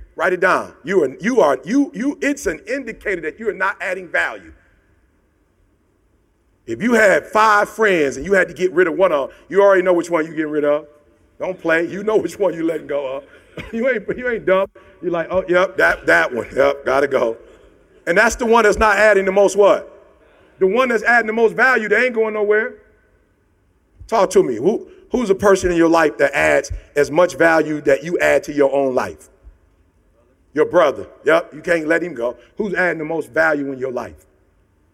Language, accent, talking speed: English, American, 215 wpm